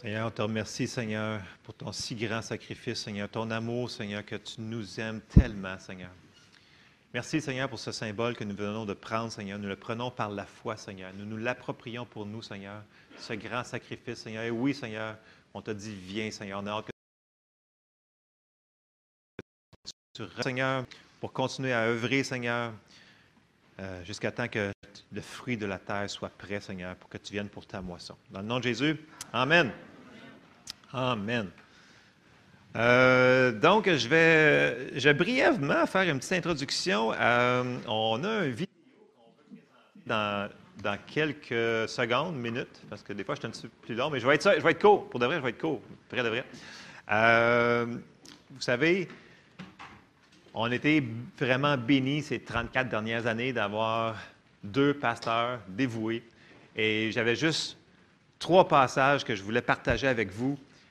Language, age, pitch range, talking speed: French, 30-49, 105-130 Hz, 165 wpm